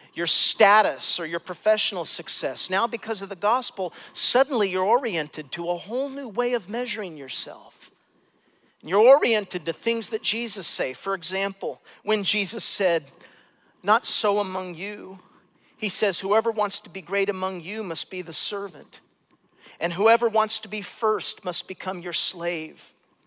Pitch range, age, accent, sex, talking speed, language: 180-235 Hz, 50-69, American, male, 155 wpm, English